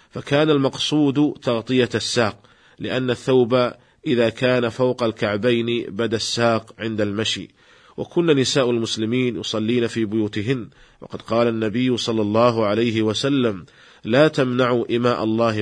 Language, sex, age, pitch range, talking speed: Arabic, male, 40-59, 110-130 Hz, 120 wpm